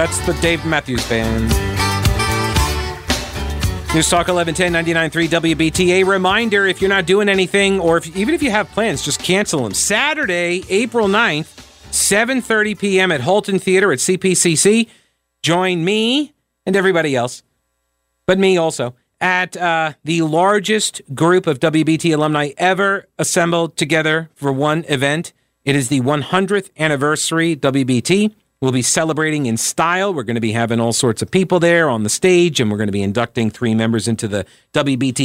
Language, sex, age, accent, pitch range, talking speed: English, male, 40-59, American, 125-180 Hz, 160 wpm